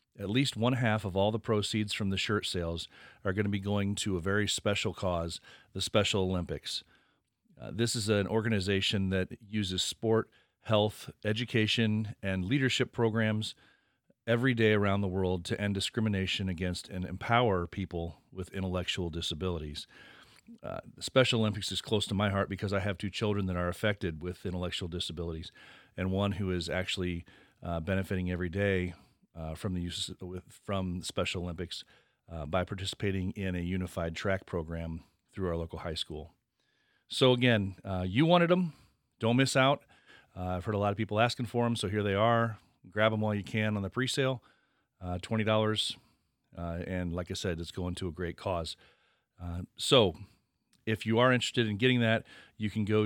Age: 40-59